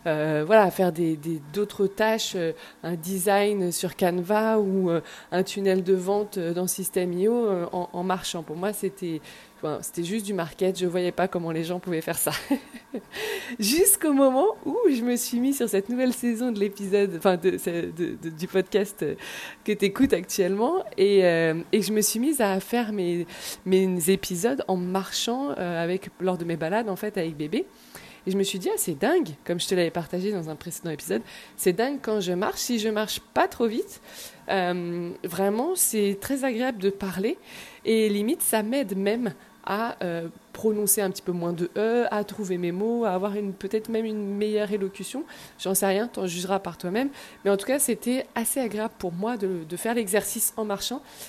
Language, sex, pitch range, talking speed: French, female, 180-230 Hz, 205 wpm